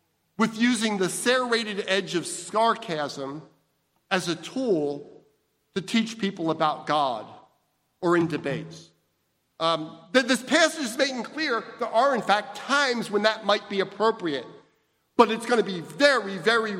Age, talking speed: 50-69, 145 wpm